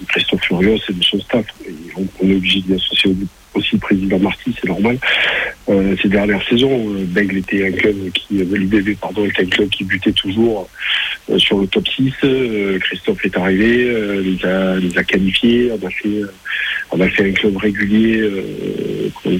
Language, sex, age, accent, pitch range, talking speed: French, male, 50-69, French, 95-110 Hz, 190 wpm